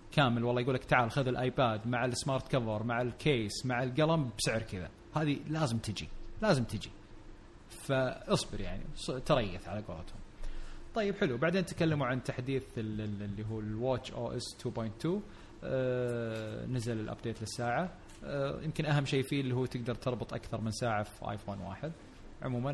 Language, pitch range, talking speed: Arabic, 115-140 Hz, 150 wpm